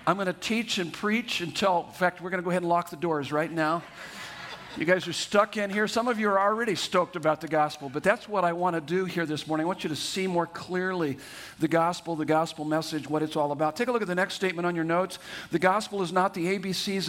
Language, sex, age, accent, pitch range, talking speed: English, male, 50-69, American, 165-200 Hz, 275 wpm